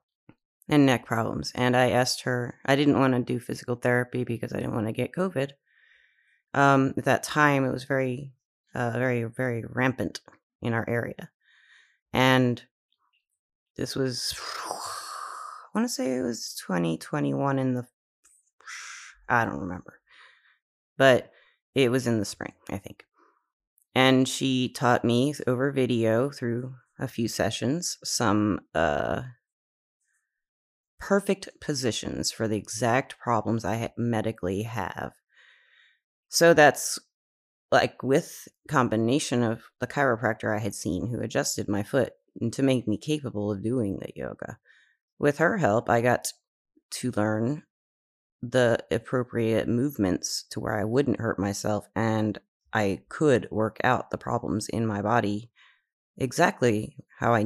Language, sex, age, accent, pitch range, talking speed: English, female, 30-49, American, 110-135 Hz, 140 wpm